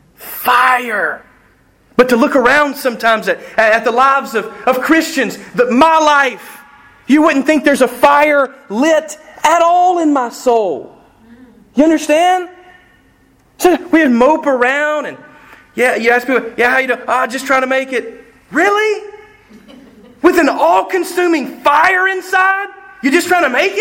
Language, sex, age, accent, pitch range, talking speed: English, male, 30-49, American, 220-310 Hz, 155 wpm